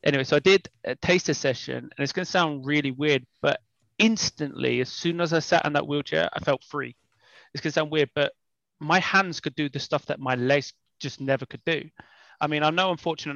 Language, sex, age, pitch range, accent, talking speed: English, male, 20-39, 135-155 Hz, British, 235 wpm